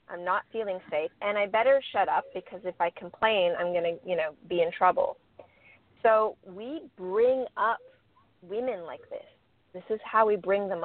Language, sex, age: English, female, 30-49